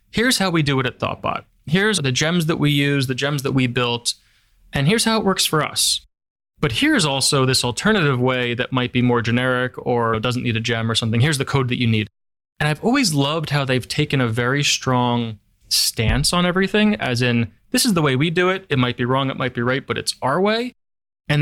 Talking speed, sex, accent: 235 wpm, male, American